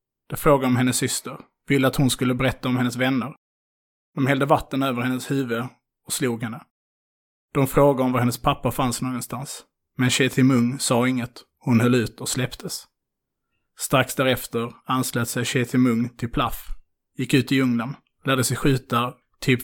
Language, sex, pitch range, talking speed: Swedish, male, 120-135 Hz, 165 wpm